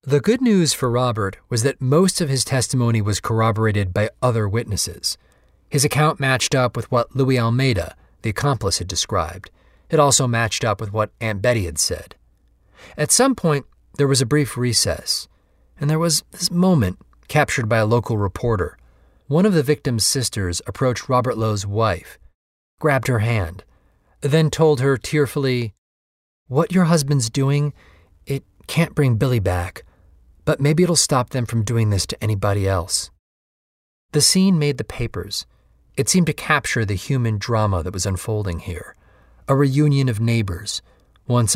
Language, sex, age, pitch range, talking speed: English, male, 30-49, 100-140 Hz, 165 wpm